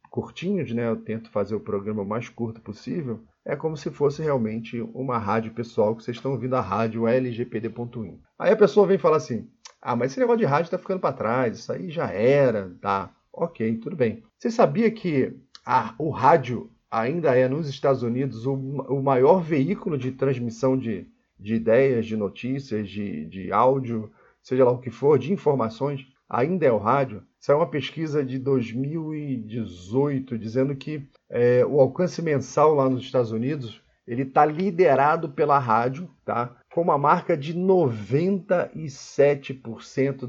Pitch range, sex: 115-150 Hz, male